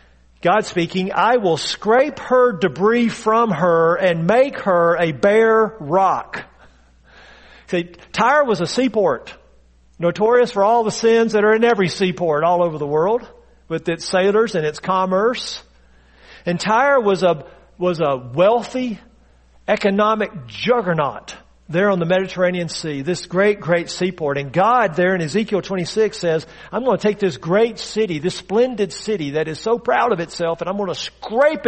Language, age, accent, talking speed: English, 50-69, American, 165 wpm